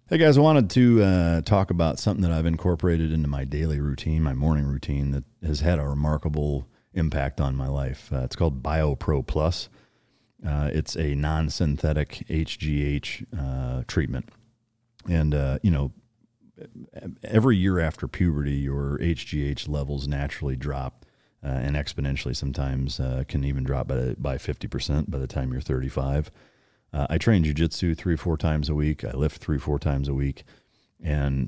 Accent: American